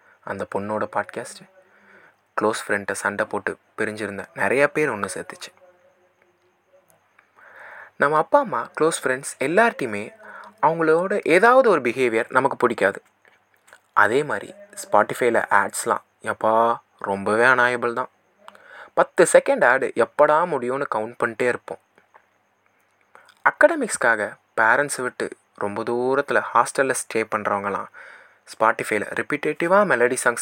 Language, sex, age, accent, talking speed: Tamil, male, 20-39, native, 105 wpm